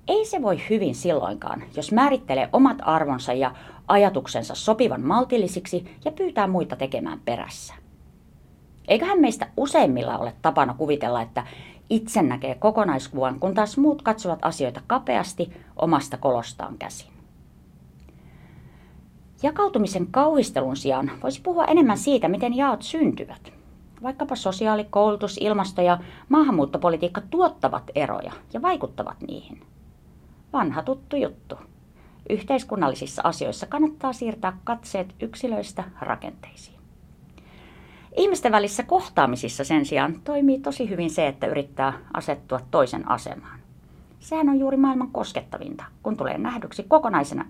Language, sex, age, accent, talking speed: Finnish, female, 30-49, native, 115 wpm